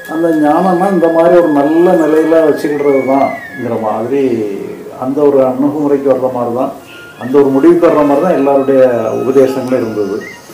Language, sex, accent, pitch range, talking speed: Tamil, male, native, 130-170 Hz, 135 wpm